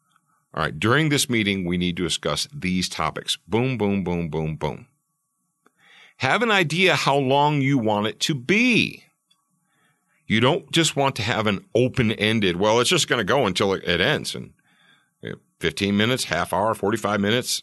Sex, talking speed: male, 170 wpm